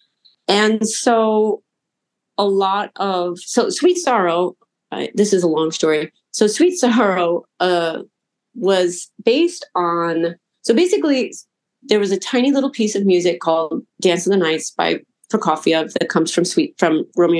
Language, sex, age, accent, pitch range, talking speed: English, female, 40-59, American, 170-210 Hz, 150 wpm